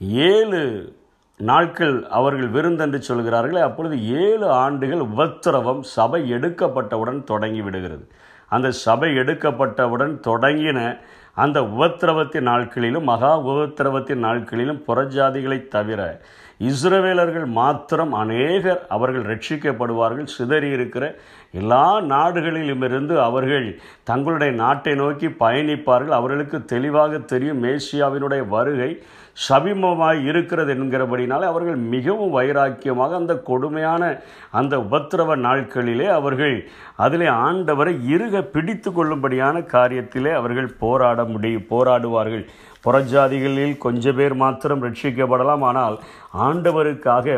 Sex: male